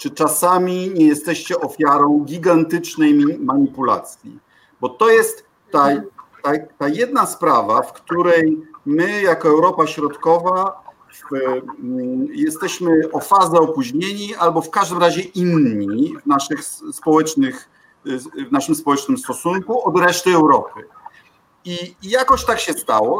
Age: 50-69